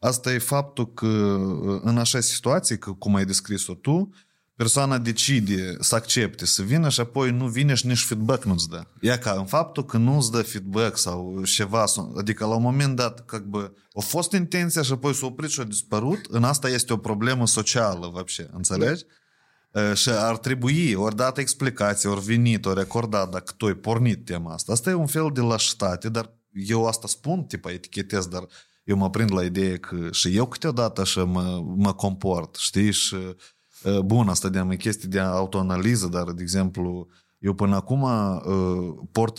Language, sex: Romanian, male